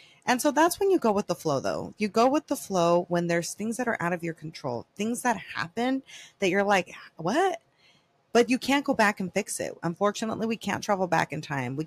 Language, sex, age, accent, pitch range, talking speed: English, female, 30-49, American, 155-195 Hz, 240 wpm